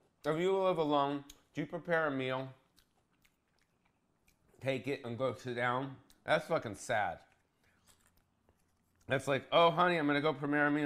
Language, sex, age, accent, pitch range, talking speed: English, male, 30-49, American, 90-140 Hz, 160 wpm